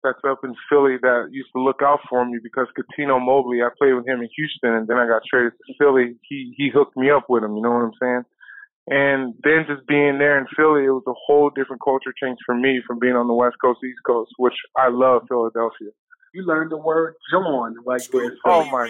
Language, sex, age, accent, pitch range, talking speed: English, male, 20-39, American, 125-145 Hz, 240 wpm